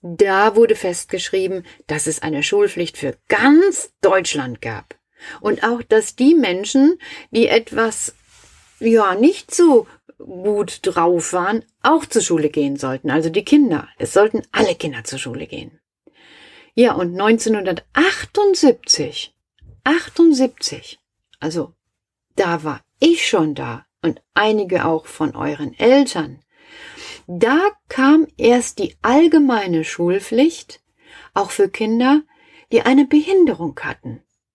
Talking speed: 120 wpm